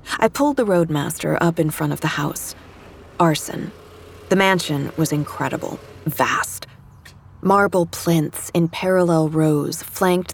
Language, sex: English, female